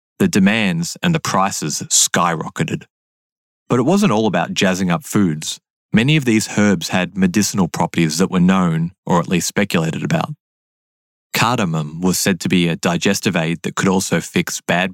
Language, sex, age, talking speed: English, male, 20-39, 170 wpm